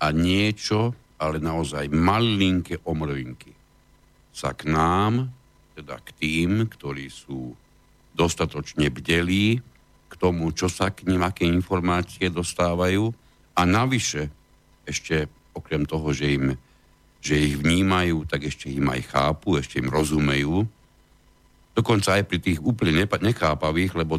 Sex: male